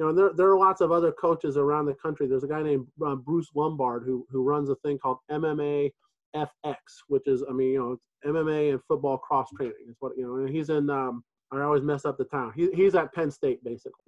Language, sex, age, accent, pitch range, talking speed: English, male, 30-49, American, 135-160 Hz, 245 wpm